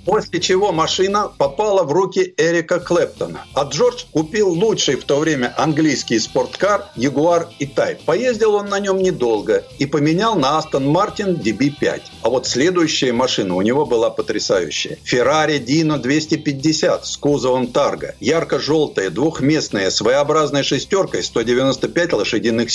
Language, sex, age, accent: Russian, male, 50-69, native